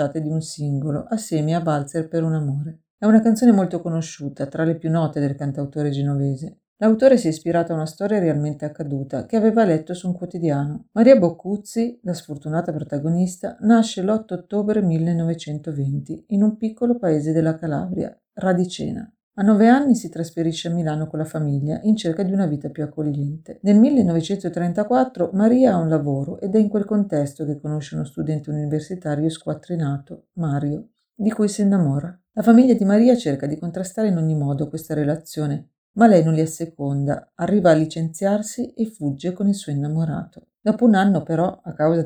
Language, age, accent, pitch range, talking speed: Italian, 50-69, native, 155-200 Hz, 175 wpm